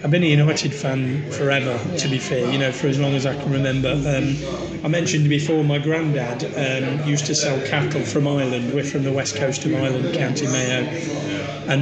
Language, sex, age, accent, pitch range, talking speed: English, male, 30-49, British, 135-155 Hz, 210 wpm